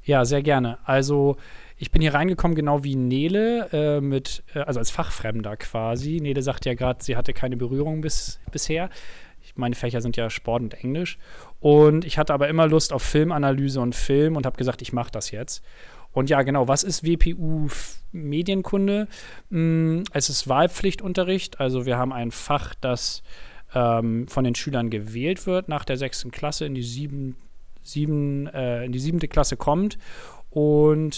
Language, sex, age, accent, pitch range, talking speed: German, male, 30-49, German, 130-155 Hz, 175 wpm